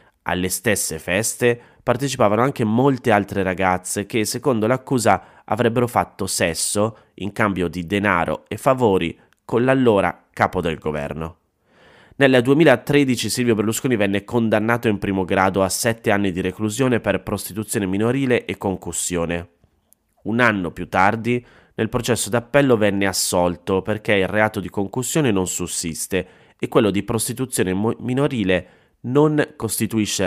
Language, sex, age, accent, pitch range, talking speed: Italian, male, 30-49, native, 95-120 Hz, 135 wpm